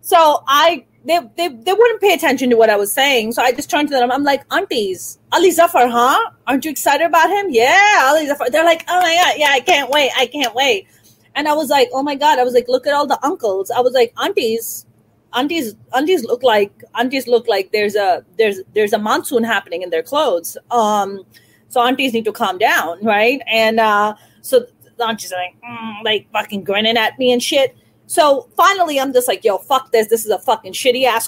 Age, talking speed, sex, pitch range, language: 30-49, 225 wpm, female, 230-355 Hz, English